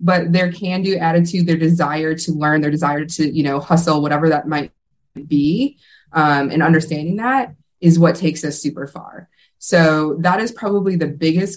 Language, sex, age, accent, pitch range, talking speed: English, female, 20-39, American, 155-180 Hz, 175 wpm